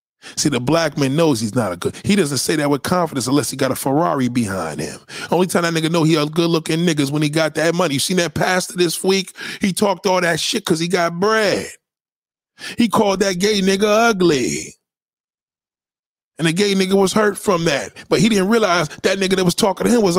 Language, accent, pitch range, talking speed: English, American, 130-185 Hz, 235 wpm